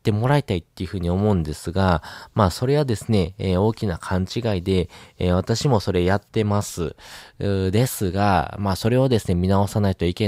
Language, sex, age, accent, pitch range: Japanese, male, 20-39, native, 85-105 Hz